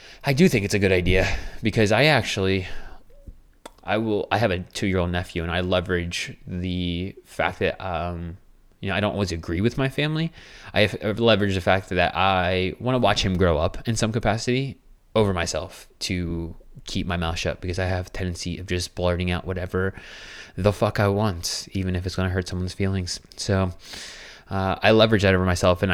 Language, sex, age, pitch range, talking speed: English, male, 20-39, 90-105 Hz, 200 wpm